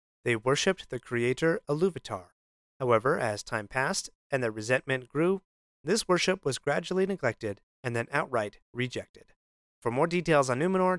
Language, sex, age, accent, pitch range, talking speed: English, male, 30-49, American, 120-165 Hz, 145 wpm